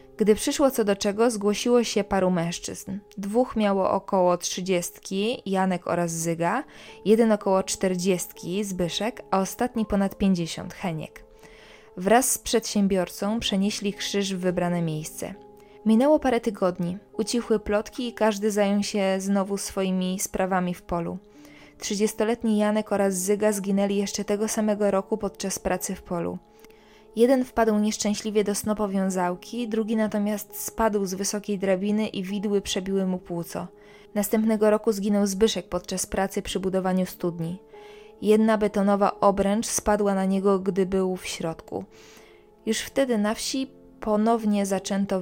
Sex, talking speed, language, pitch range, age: female, 135 wpm, Polish, 190-215 Hz, 20-39